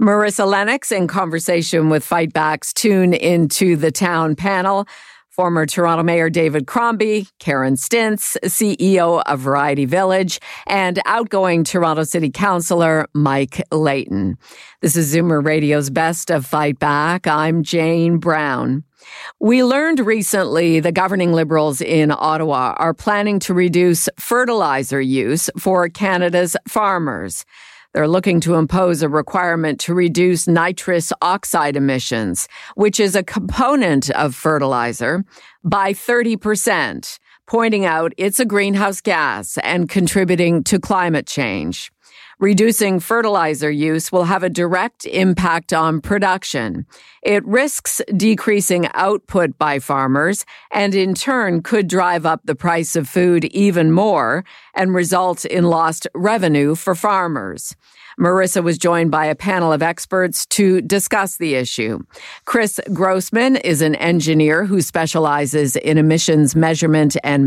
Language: English